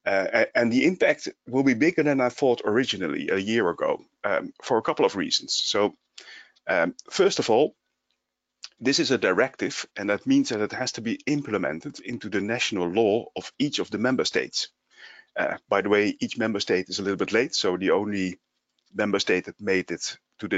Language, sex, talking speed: English, male, 205 wpm